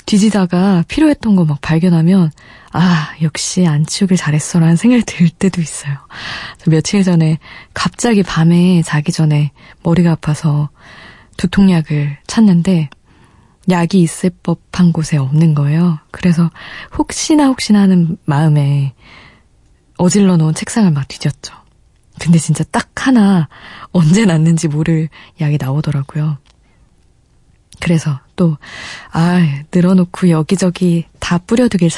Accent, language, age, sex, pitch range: native, Korean, 20-39, female, 155-195 Hz